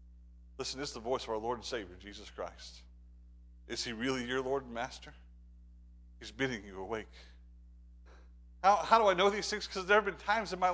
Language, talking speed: English, 205 wpm